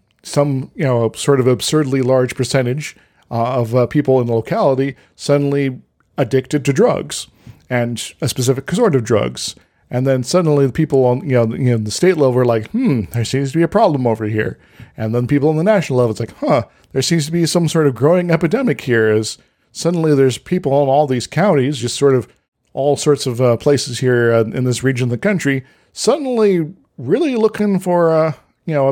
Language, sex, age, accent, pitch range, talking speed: English, male, 40-59, American, 120-155 Hz, 210 wpm